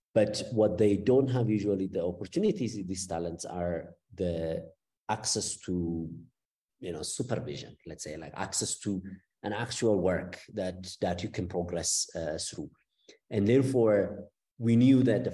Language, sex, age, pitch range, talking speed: English, male, 50-69, 90-110 Hz, 150 wpm